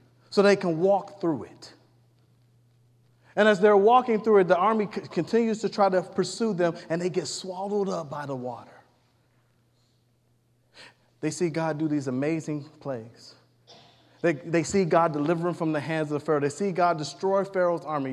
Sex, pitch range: male, 130-185 Hz